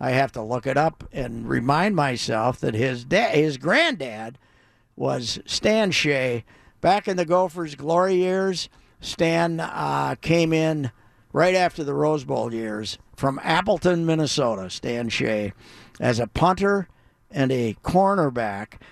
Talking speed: 140 wpm